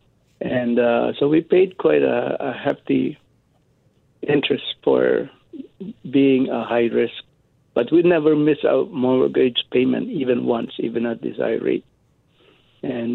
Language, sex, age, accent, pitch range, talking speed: English, male, 60-79, Filipino, 120-135 Hz, 135 wpm